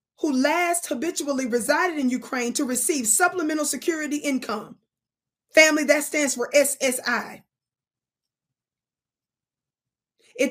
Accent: American